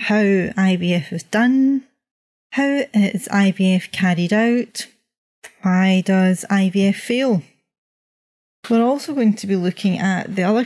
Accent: British